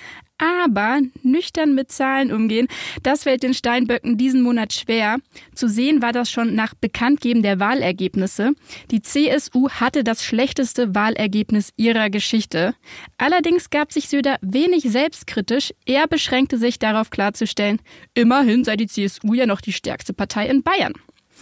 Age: 20-39